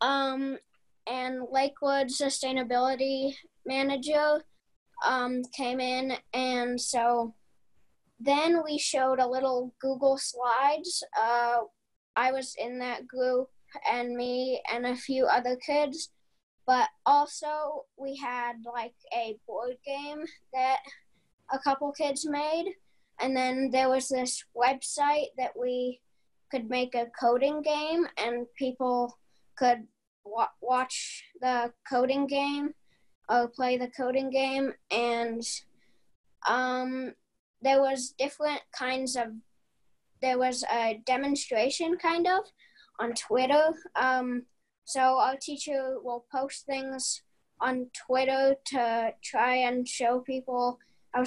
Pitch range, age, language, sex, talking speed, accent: 245-275 Hz, 10-29, English, female, 115 wpm, American